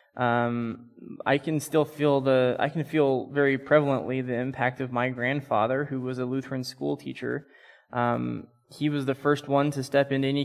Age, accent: 20-39, American